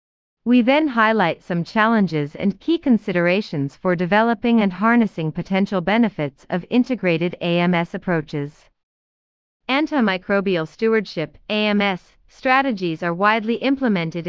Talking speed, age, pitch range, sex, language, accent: 100 wpm, 30-49, 170-230 Hz, female, English, American